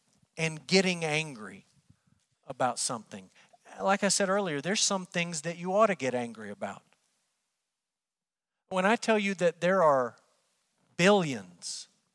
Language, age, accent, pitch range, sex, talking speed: English, 50-69, American, 145-195 Hz, male, 135 wpm